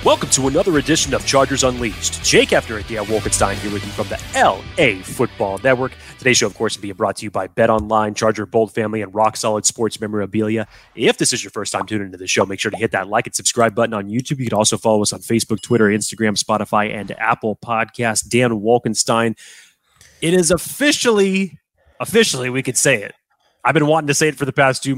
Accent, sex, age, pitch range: American, male, 30-49, 105-135 Hz